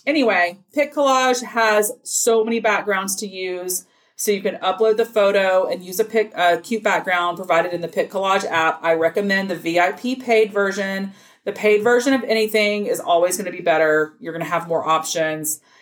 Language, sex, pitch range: English, female, 175-225 Hz